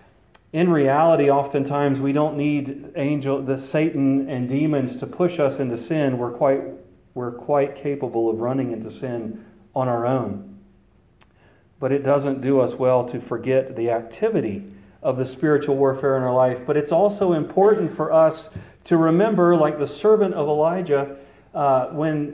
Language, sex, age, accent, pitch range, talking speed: English, male, 40-59, American, 135-170 Hz, 160 wpm